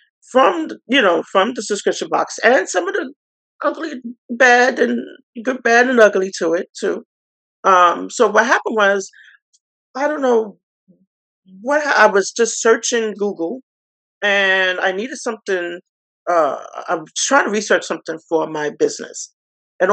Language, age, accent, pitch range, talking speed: English, 40-59, American, 165-240 Hz, 150 wpm